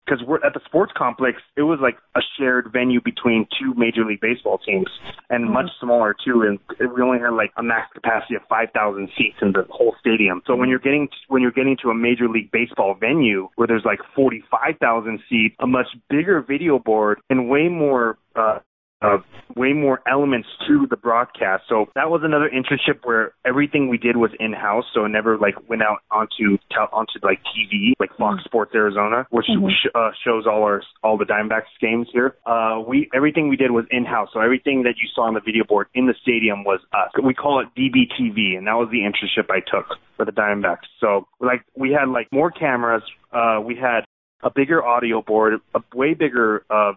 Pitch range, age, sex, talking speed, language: 110-130 Hz, 20-39, male, 205 wpm, English